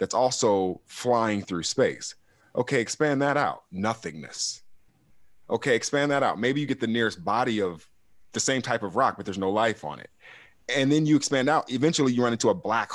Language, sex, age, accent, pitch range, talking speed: English, male, 30-49, American, 90-125 Hz, 200 wpm